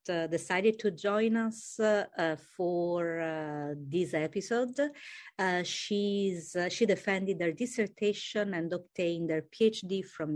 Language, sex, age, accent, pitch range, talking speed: English, female, 50-69, Italian, 165-220 Hz, 115 wpm